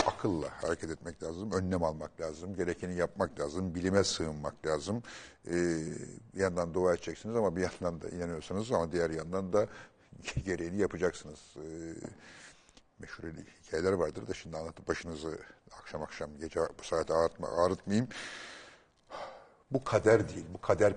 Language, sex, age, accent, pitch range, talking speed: Turkish, male, 60-79, native, 85-100 Hz, 140 wpm